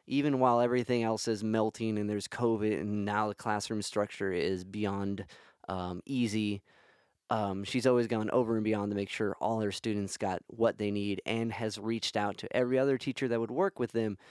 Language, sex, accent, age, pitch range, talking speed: English, male, American, 20-39, 105-130 Hz, 200 wpm